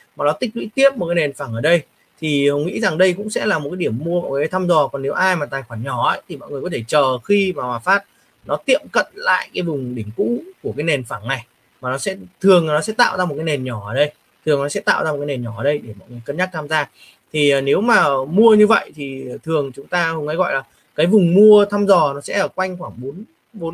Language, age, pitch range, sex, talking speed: Vietnamese, 20-39, 135-185 Hz, male, 295 wpm